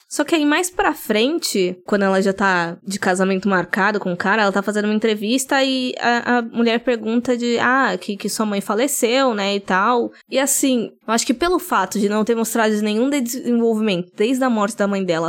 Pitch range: 185-230 Hz